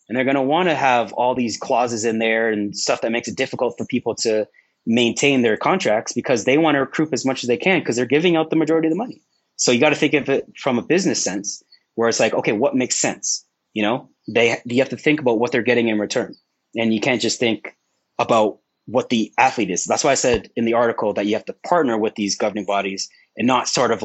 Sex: male